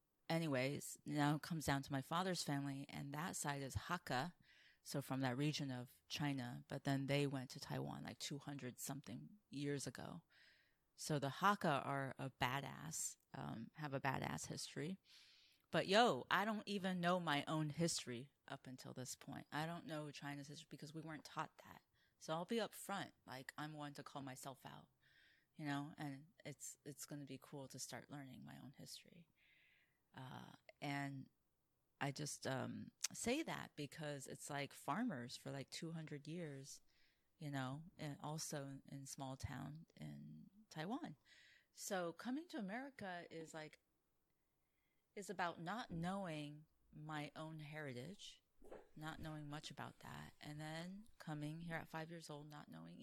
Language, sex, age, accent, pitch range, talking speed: English, female, 30-49, American, 135-160 Hz, 160 wpm